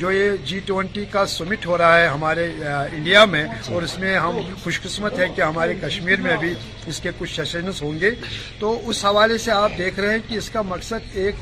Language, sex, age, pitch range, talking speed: Urdu, male, 50-69, 160-200 Hz, 225 wpm